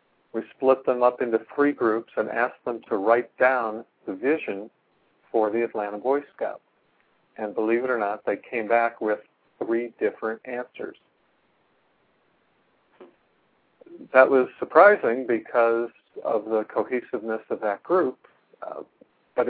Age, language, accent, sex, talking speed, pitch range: 50-69, English, American, male, 135 wpm, 110-125 Hz